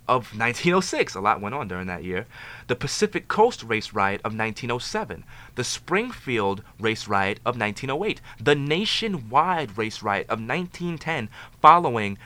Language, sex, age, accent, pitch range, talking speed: English, male, 20-39, American, 105-135 Hz, 140 wpm